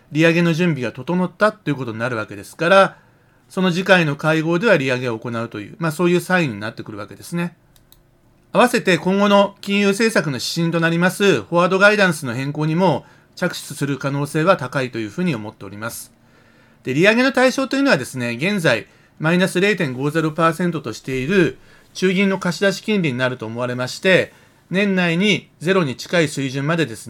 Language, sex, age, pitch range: Japanese, male, 40-59, 130-185 Hz